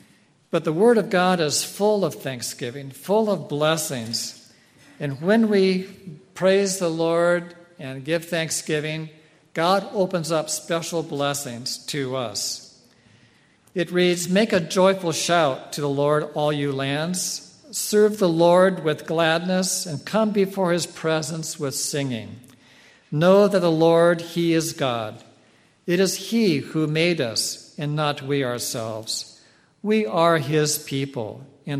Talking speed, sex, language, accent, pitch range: 140 wpm, male, English, American, 130-180 Hz